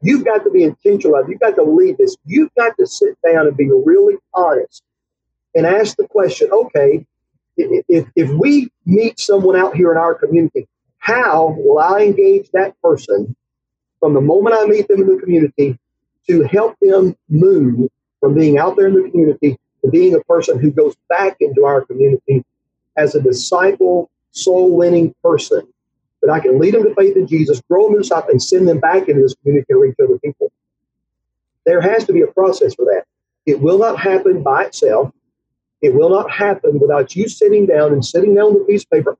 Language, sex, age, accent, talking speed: English, male, 40-59, American, 195 wpm